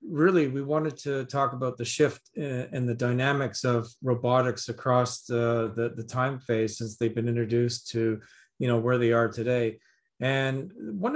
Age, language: 40-59, English